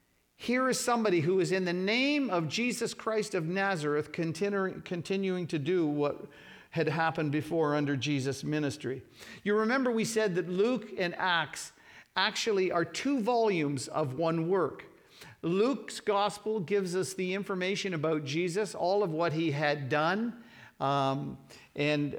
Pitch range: 160-215 Hz